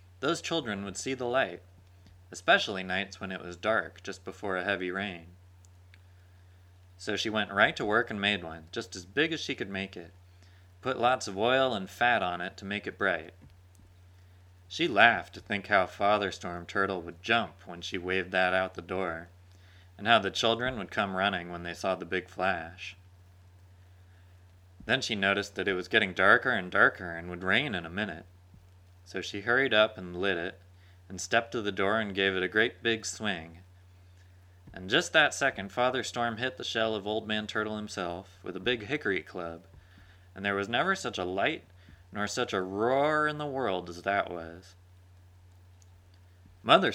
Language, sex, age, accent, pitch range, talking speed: English, male, 30-49, American, 90-105 Hz, 190 wpm